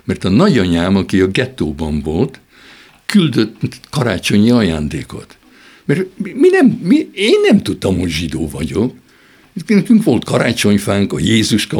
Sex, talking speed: male, 110 wpm